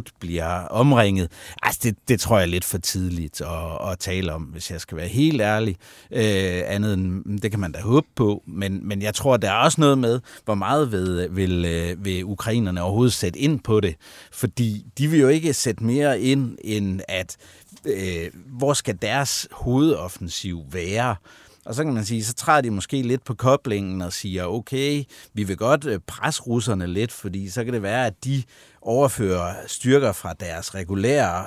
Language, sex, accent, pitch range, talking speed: Danish, male, native, 95-125 Hz, 190 wpm